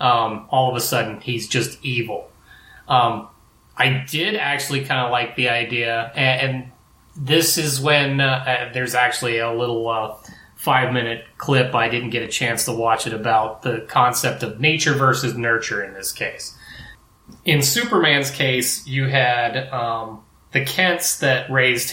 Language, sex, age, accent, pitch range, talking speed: English, male, 30-49, American, 115-145 Hz, 160 wpm